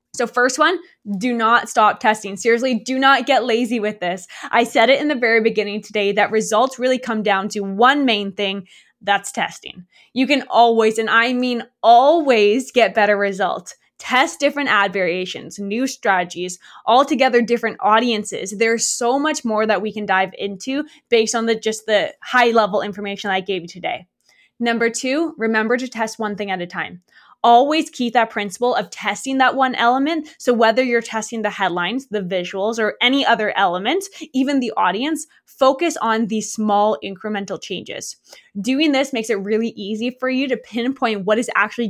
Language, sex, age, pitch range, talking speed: English, female, 20-39, 205-255 Hz, 180 wpm